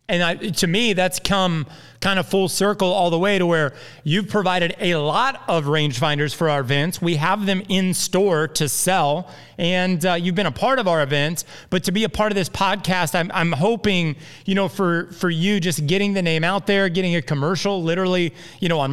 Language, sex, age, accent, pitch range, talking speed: English, male, 30-49, American, 155-190 Hz, 220 wpm